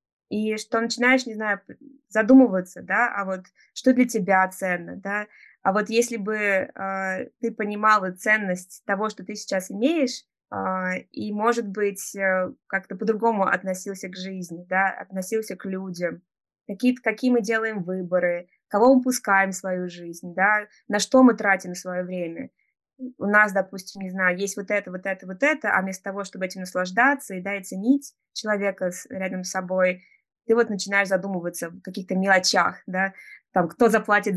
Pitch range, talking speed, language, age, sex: 190-230 Hz, 165 wpm, Russian, 20-39, female